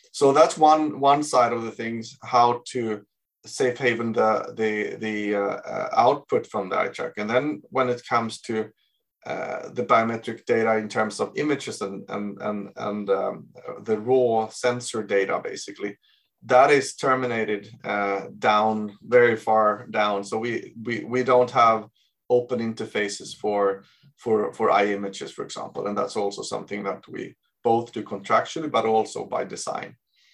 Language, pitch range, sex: English, 105-125 Hz, male